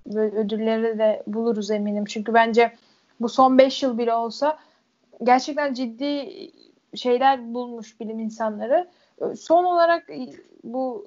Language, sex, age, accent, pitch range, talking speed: Turkish, female, 10-29, native, 230-285 Hz, 115 wpm